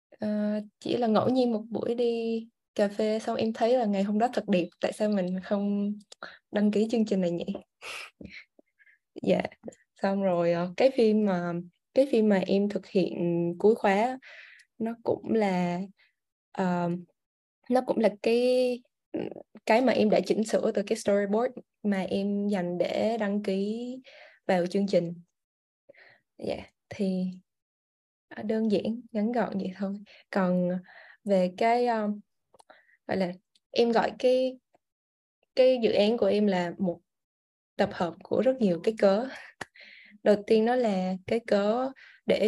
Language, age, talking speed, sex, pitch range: Vietnamese, 20-39, 155 wpm, female, 190-225 Hz